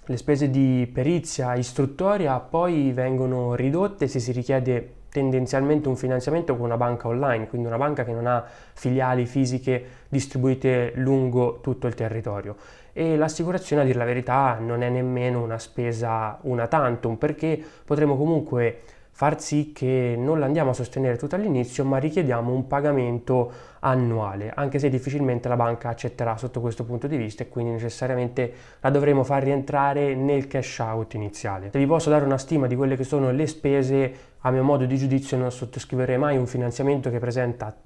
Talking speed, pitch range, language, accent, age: 170 wpm, 120-140 Hz, Italian, native, 20-39